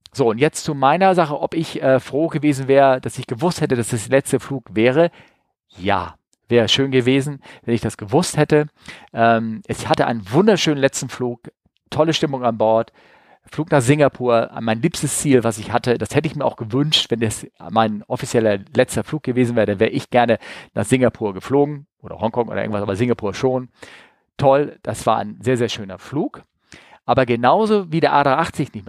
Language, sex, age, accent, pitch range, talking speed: German, male, 40-59, German, 115-145 Hz, 195 wpm